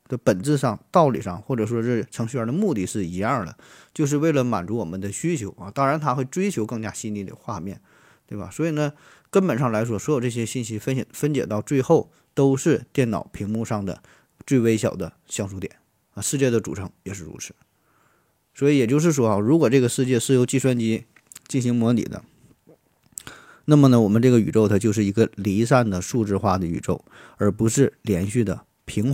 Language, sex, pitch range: Chinese, male, 110-135 Hz